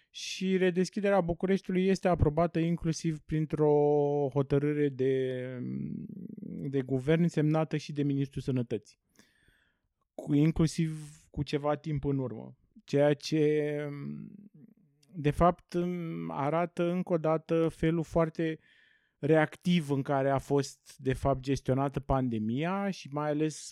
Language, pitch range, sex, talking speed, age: Romanian, 140-175 Hz, male, 115 wpm, 20-39